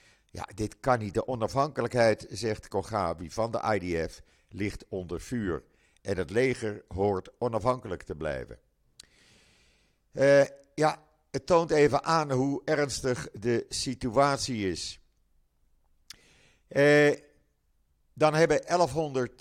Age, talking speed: 50-69, 105 wpm